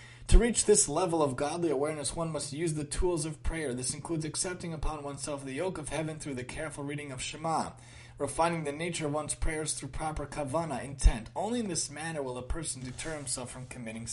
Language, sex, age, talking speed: English, male, 30-49, 210 wpm